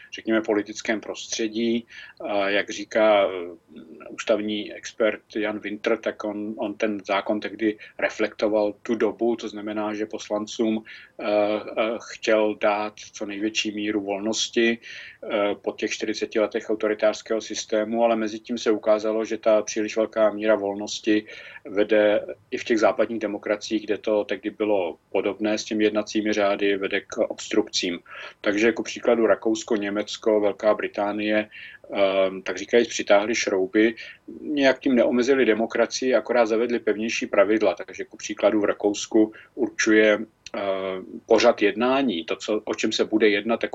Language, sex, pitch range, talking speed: Czech, male, 105-110 Hz, 135 wpm